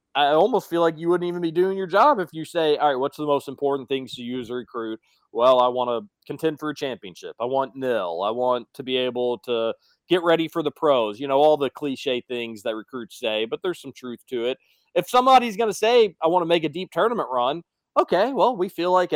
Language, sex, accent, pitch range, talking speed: English, male, American, 130-185 Hz, 250 wpm